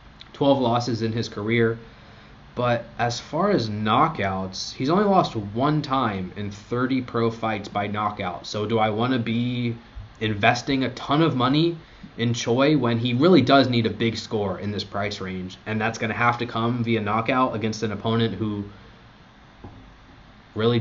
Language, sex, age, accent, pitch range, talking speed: English, male, 20-39, American, 100-120 Hz, 165 wpm